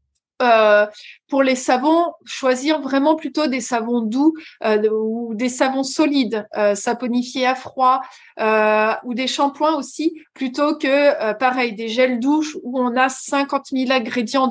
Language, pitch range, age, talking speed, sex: French, 230-300 Hz, 30-49, 155 wpm, female